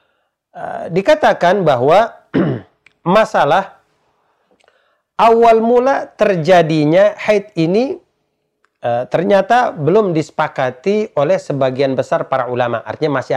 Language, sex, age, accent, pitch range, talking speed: Indonesian, male, 40-59, native, 145-220 Hz, 85 wpm